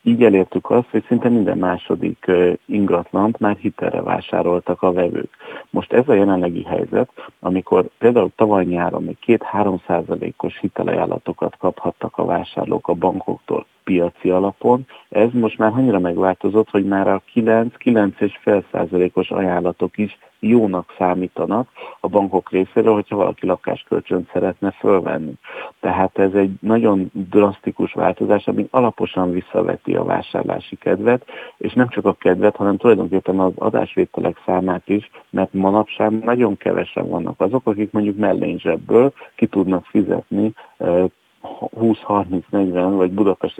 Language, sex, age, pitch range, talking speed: Hungarian, male, 50-69, 90-110 Hz, 125 wpm